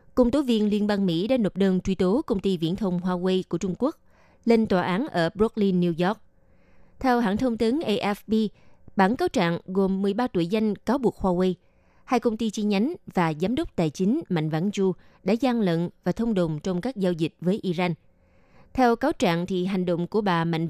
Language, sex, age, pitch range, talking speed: Vietnamese, female, 20-39, 175-225 Hz, 215 wpm